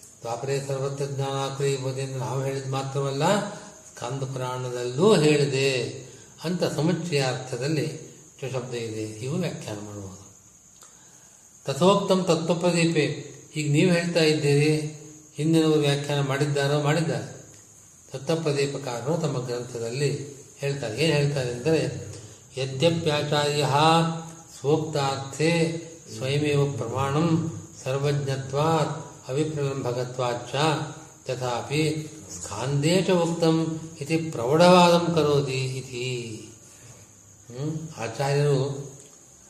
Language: Kannada